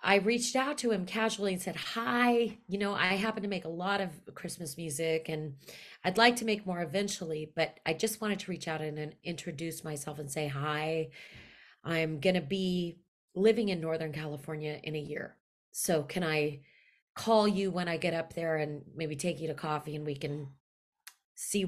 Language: English